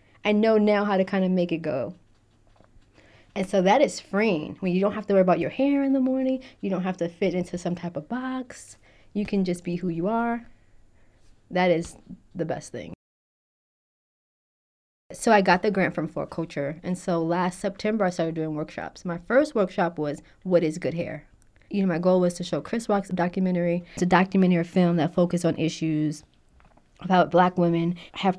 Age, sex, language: 20-39, female, English